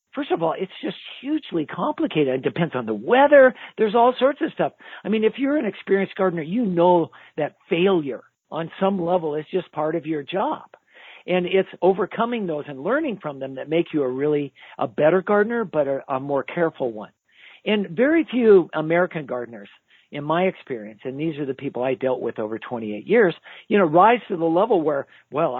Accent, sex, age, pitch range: American, male, 50-69, 140-195 Hz